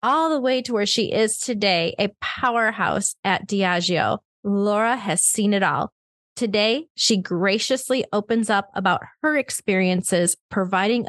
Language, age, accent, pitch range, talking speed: English, 30-49, American, 180-230 Hz, 140 wpm